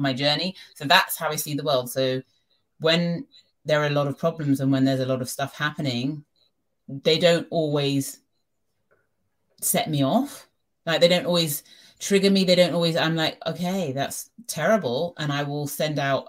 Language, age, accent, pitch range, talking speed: English, 30-49, British, 135-165 Hz, 185 wpm